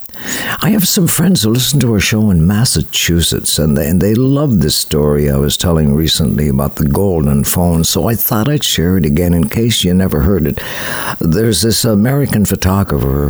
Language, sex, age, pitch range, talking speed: English, male, 60-79, 85-120 Hz, 190 wpm